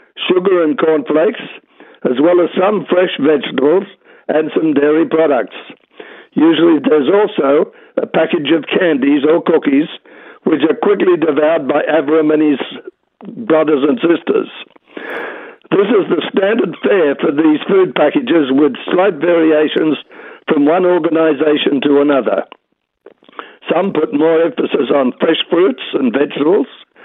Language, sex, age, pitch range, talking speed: English, male, 60-79, 150-235 Hz, 130 wpm